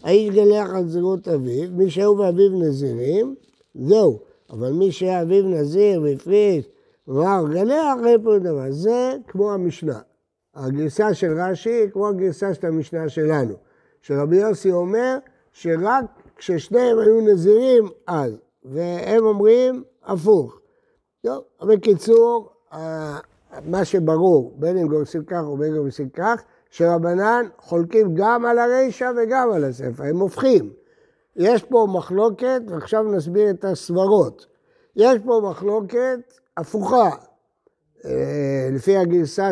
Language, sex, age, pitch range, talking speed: Hebrew, male, 60-79, 165-230 Hz, 120 wpm